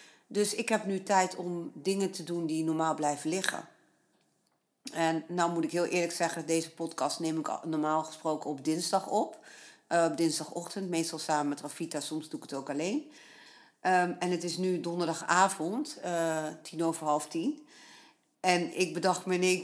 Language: Dutch